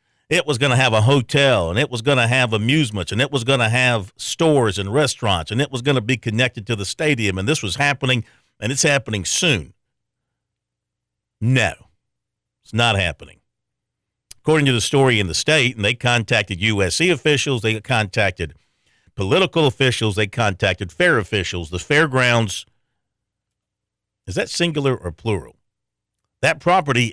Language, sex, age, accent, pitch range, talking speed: English, male, 50-69, American, 105-135 Hz, 165 wpm